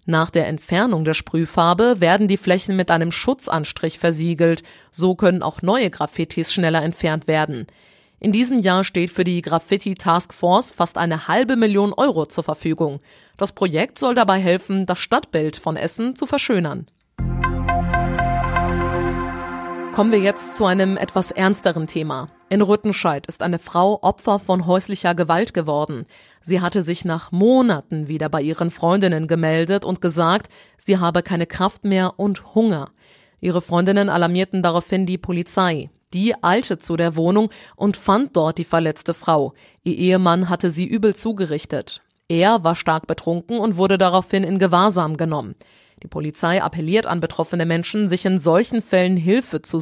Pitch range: 165-195 Hz